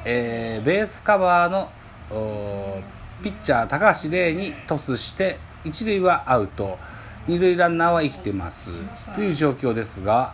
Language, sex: Japanese, male